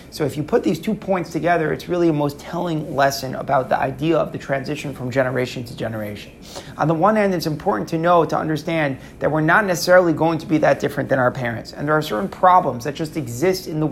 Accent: American